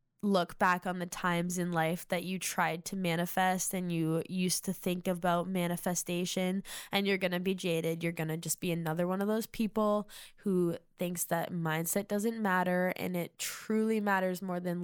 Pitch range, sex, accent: 175-205 Hz, female, American